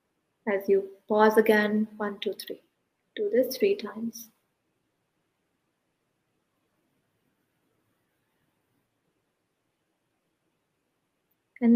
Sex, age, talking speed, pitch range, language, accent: female, 20-39, 60 wpm, 205-245 Hz, Hindi, native